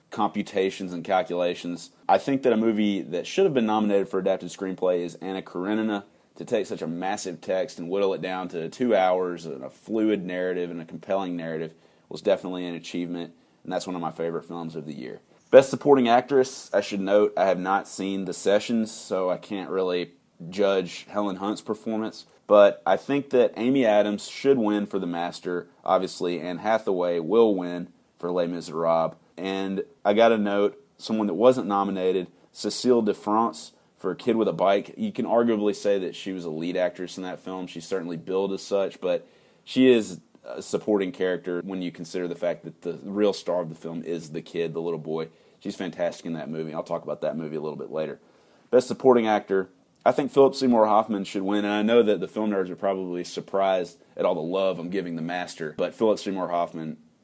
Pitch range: 90-105 Hz